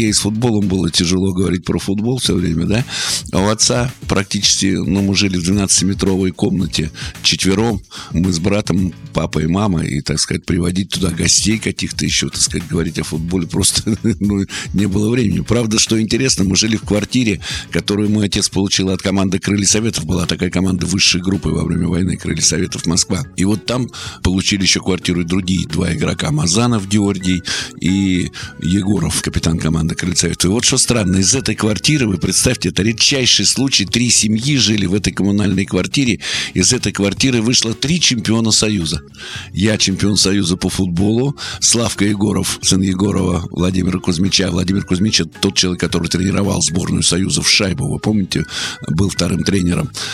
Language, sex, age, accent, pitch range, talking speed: Russian, male, 50-69, native, 90-105 Hz, 170 wpm